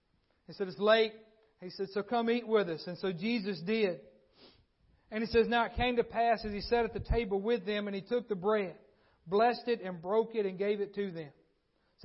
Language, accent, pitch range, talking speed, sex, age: English, American, 195-230 Hz, 235 wpm, male, 40-59